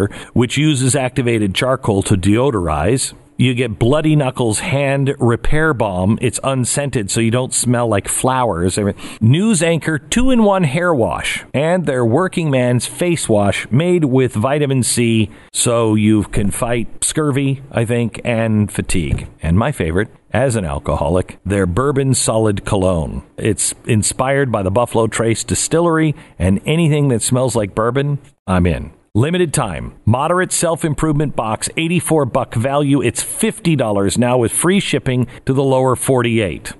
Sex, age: male, 50-69